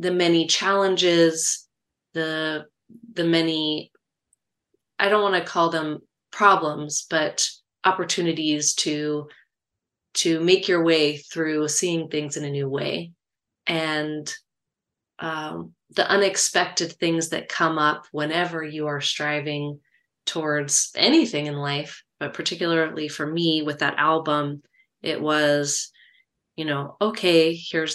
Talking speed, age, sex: 120 wpm, 30-49, female